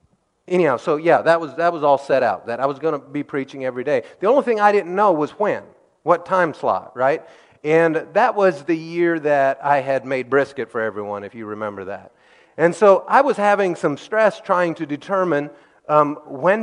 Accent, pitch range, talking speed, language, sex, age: American, 140-180 Hz, 215 wpm, English, male, 40-59